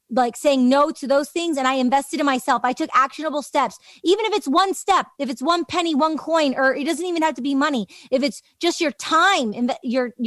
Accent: American